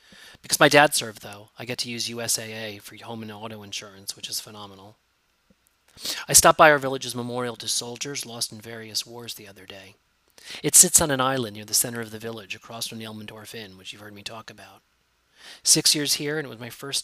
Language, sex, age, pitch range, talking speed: English, male, 30-49, 110-130 Hz, 220 wpm